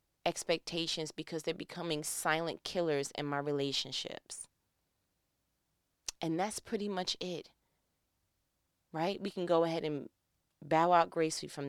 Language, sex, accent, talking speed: English, female, American, 125 wpm